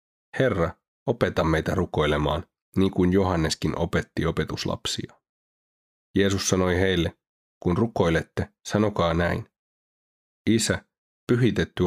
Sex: male